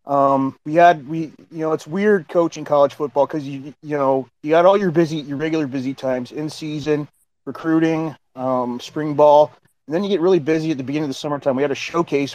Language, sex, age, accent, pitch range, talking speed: English, male, 30-49, American, 135-155 Hz, 225 wpm